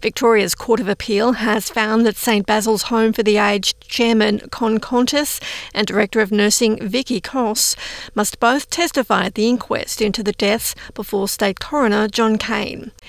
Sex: female